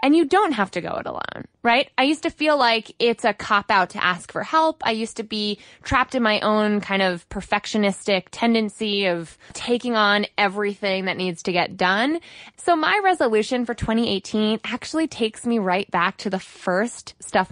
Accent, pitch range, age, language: American, 195-270 Hz, 20-39, English